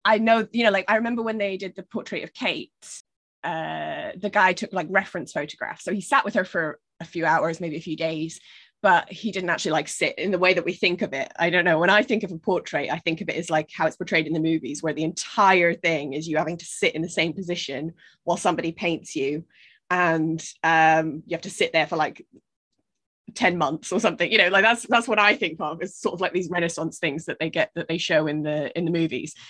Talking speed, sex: 255 wpm, female